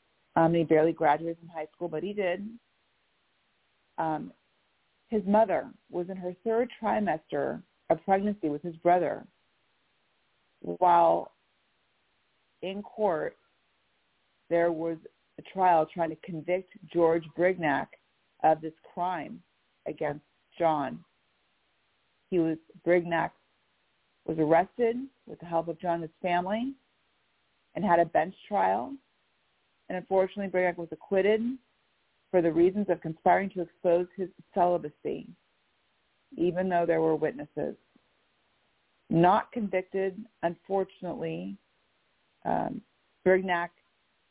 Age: 40-59